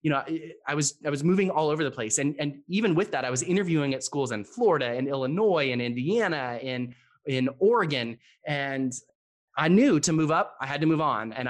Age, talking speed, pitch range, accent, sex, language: 20-39, 220 wpm, 120-145 Hz, American, male, English